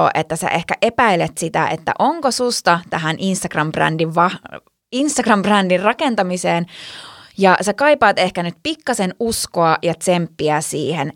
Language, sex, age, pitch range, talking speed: Finnish, female, 20-39, 160-230 Hz, 125 wpm